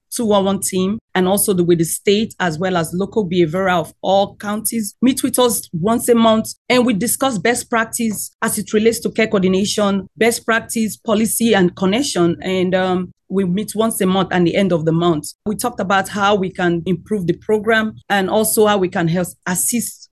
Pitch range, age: 180-220 Hz, 40-59